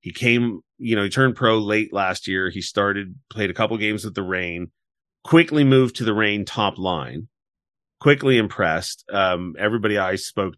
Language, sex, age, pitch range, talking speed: English, male, 30-49, 100-130 Hz, 180 wpm